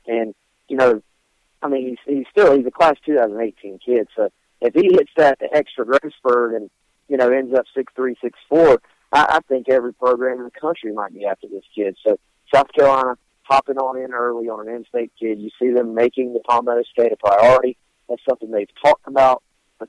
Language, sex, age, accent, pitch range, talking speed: English, male, 50-69, American, 115-135 Hz, 200 wpm